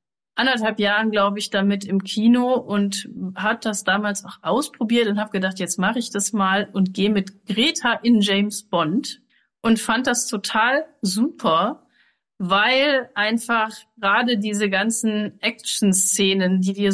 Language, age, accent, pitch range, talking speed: German, 30-49, German, 195-230 Hz, 145 wpm